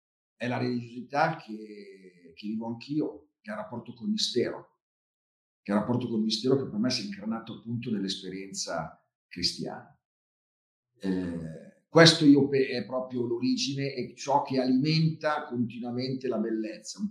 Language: Italian